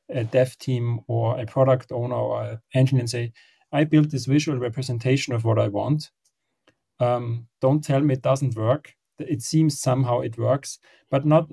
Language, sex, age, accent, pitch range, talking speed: English, male, 30-49, German, 120-135 Hz, 180 wpm